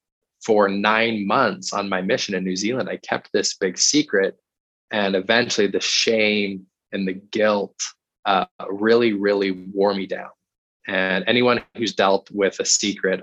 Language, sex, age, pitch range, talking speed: English, male, 20-39, 95-110 Hz, 155 wpm